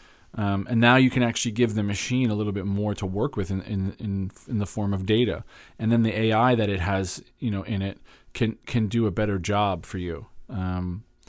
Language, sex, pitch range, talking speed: English, male, 95-115 Hz, 235 wpm